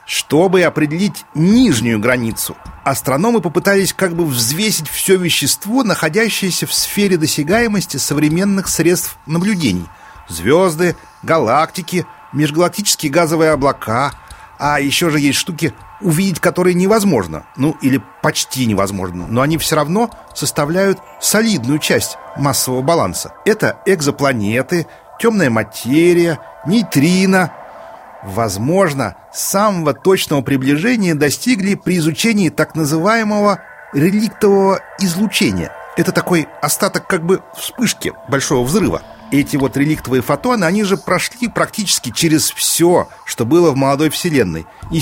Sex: male